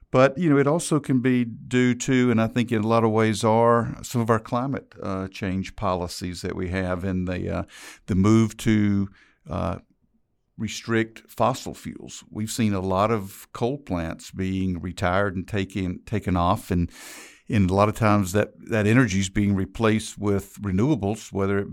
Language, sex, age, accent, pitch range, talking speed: English, male, 50-69, American, 95-115 Hz, 185 wpm